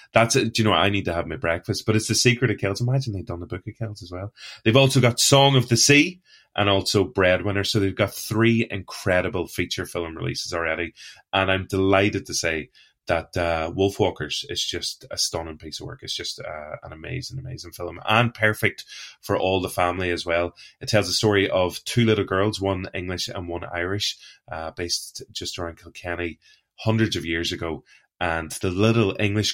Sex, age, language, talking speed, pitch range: male, 30-49, English, 205 wpm, 85-110 Hz